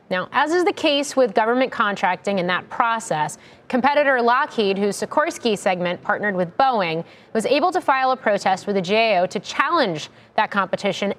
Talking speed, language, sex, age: 170 wpm, English, female, 30-49